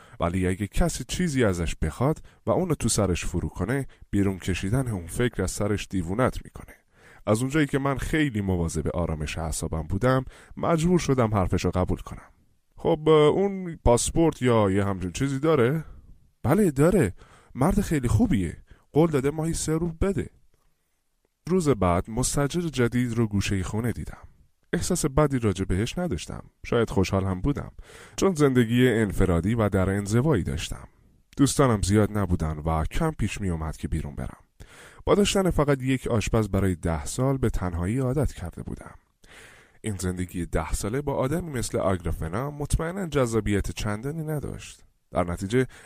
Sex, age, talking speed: male, 20-39, 155 wpm